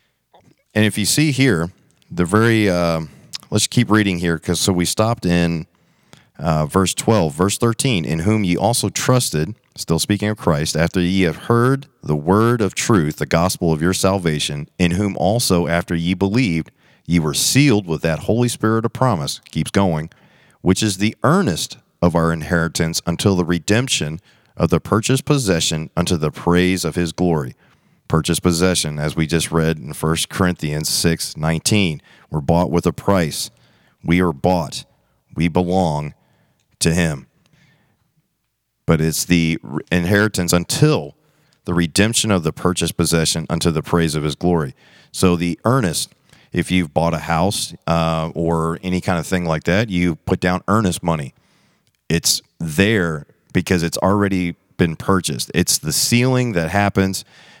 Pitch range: 80-105 Hz